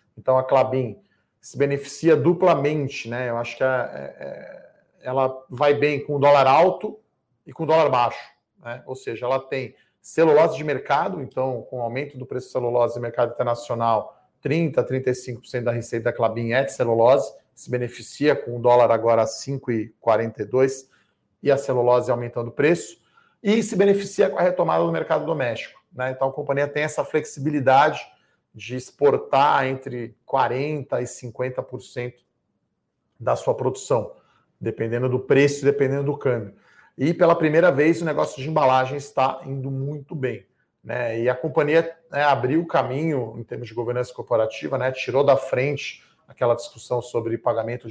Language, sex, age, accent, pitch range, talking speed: Portuguese, male, 40-59, Brazilian, 120-145 Hz, 165 wpm